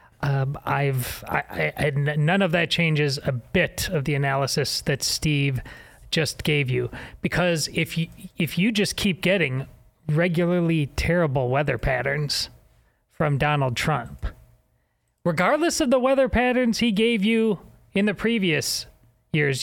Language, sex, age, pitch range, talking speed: English, male, 30-49, 150-220 Hz, 140 wpm